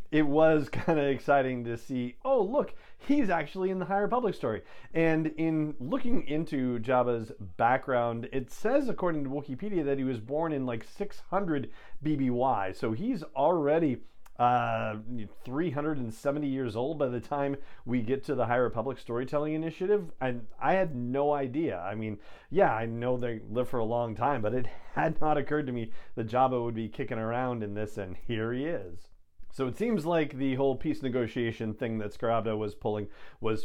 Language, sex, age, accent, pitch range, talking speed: English, male, 40-59, American, 115-150 Hz, 180 wpm